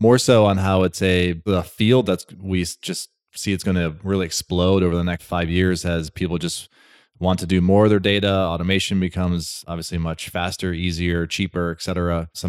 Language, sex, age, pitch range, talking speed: English, male, 20-39, 90-105 Hz, 195 wpm